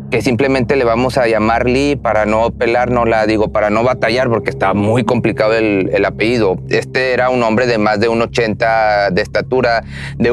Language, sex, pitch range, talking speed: Spanish, male, 105-135 Hz, 205 wpm